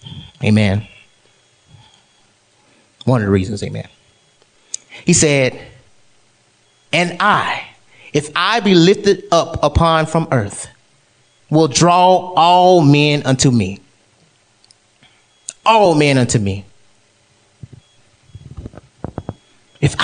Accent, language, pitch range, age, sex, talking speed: American, English, 105-175 Hz, 30-49, male, 85 wpm